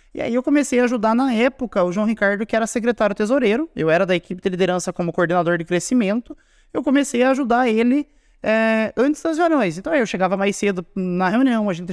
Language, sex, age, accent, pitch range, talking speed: Portuguese, male, 20-39, Brazilian, 180-245 Hz, 215 wpm